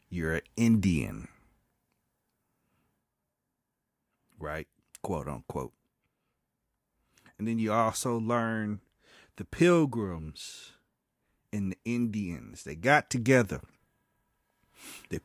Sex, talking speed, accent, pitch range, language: male, 80 wpm, American, 90-120 Hz, English